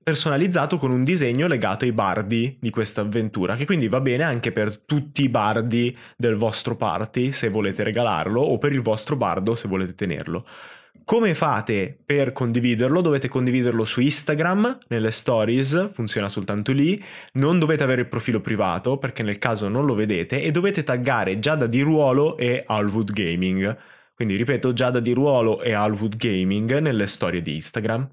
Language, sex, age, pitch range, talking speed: Italian, male, 20-39, 110-150 Hz, 170 wpm